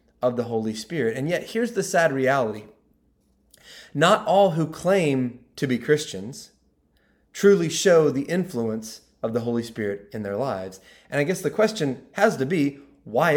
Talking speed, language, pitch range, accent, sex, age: 165 wpm, English, 135-195 Hz, American, male, 30-49